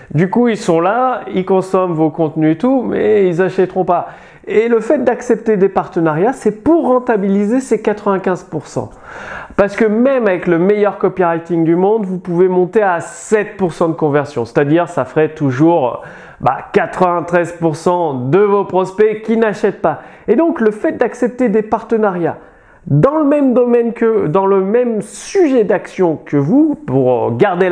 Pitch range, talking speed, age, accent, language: 175-240 Hz, 165 wpm, 30-49, French, French